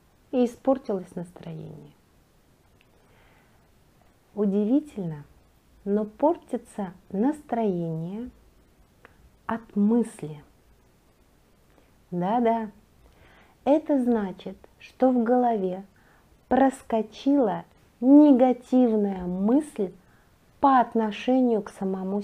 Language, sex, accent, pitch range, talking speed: Russian, female, native, 195-260 Hz, 60 wpm